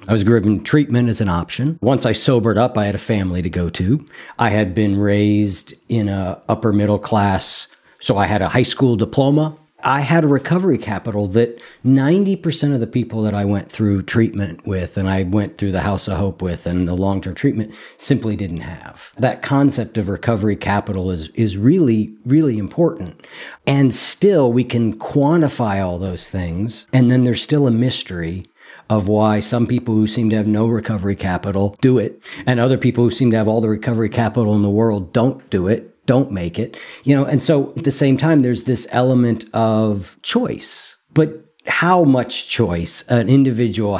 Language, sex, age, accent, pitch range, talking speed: English, male, 50-69, American, 100-125 Hz, 195 wpm